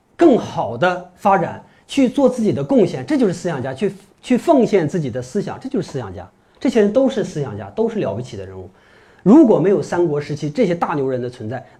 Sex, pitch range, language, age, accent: male, 130-195 Hz, Chinese, 30-49, native